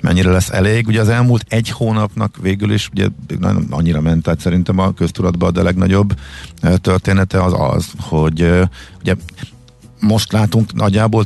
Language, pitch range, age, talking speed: Hungarian, 80-100 Hz, 50-69, 145 wpm